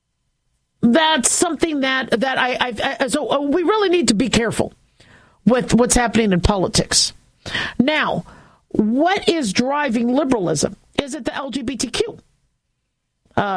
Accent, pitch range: American, 215-280 Hz